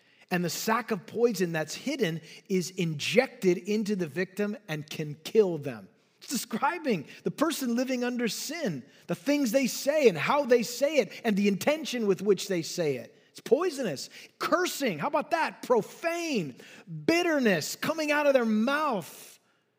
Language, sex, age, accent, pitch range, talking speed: English, male, 30-49, American, 195-285 Hz, 160 wpm